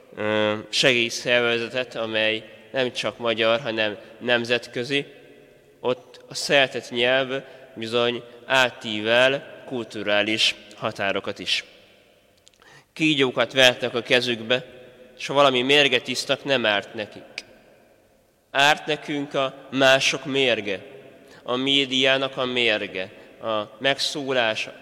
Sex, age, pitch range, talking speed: male, 20-39, 115-135 Hz, 95 wpm